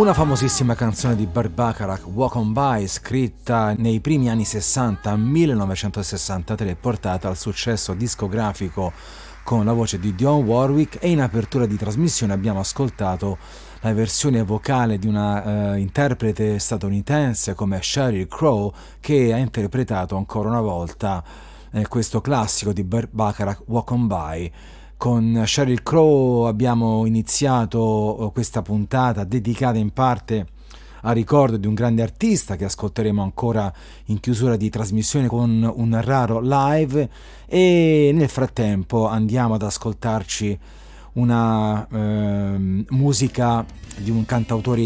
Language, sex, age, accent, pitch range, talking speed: Italian, male, 30-49, native, 105-125 Hz, 125 wpm